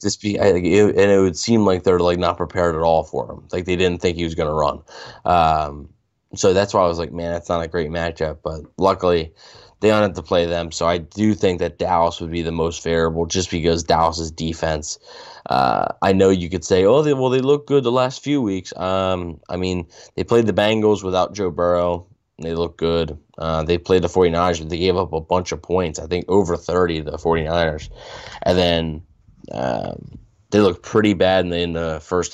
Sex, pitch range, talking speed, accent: male, 85-100 Hz, 230 wpm, American